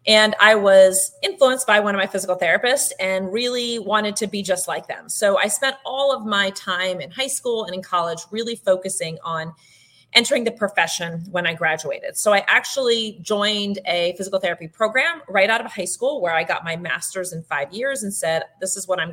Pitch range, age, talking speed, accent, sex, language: 180-220 Hz, 30-49, 210 wpm, American, female, English